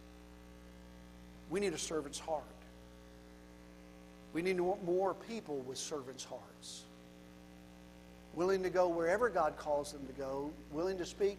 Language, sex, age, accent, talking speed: English, male, 50-69, American, 125 wpm